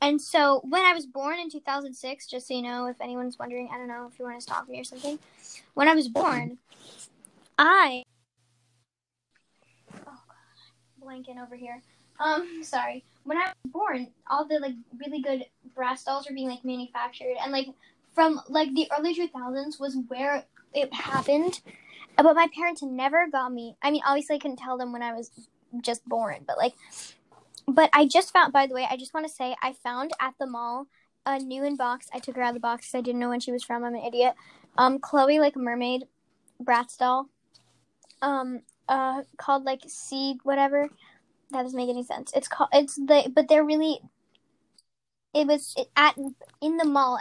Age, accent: 10-29, American